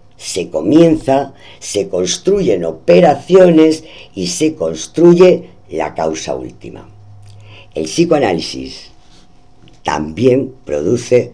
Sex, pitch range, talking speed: female, 85-130 Hz, 80 wpm